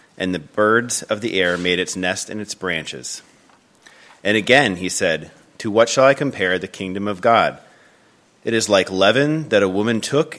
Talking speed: 190 wpm